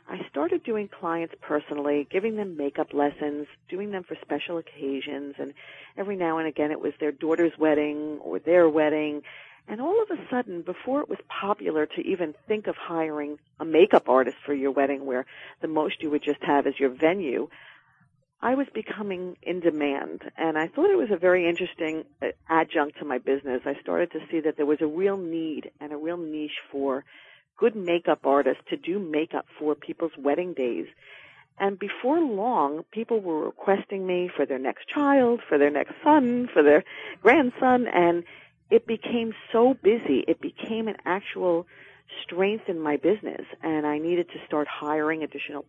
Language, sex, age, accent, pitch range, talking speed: English, female, 40-59, American, 150-200 Hz, 180 wpm